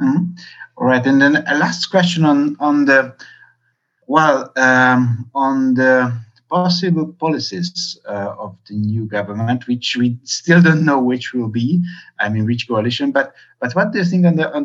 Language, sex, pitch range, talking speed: English, male, 120-170 Hz, 175 wpm